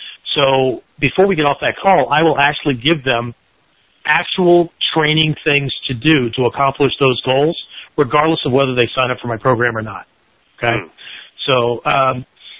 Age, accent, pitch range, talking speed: 40-59, American, 125-150 Hz, 165 wpm